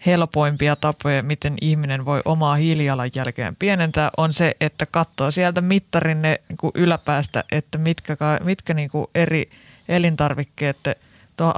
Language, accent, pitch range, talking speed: Finnish, native, 145-170 Hz, 125 wpm